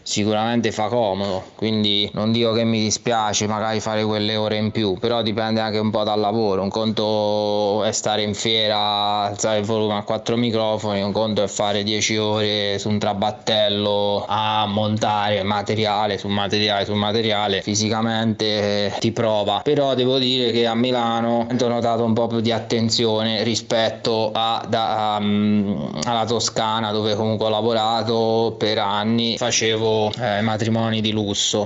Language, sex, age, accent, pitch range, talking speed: Italian, male, 20-39, native, 105-115 Hz, 155 wpm